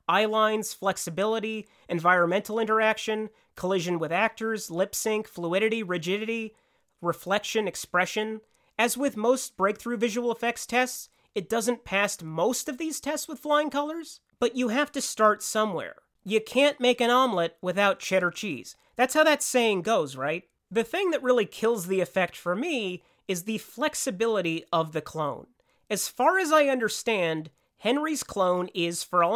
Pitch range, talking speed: 185-250 Hz, 155 wpm